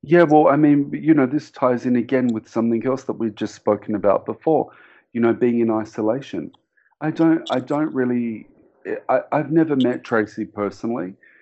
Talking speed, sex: 185 wpm, male